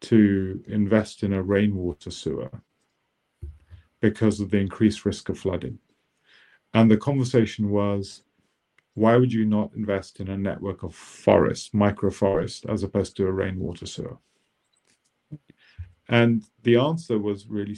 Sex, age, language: male, 50-69, English